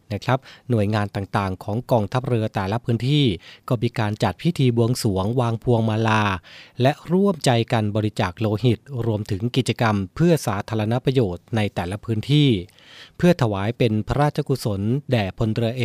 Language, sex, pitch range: Thai, male, 110-135 Hz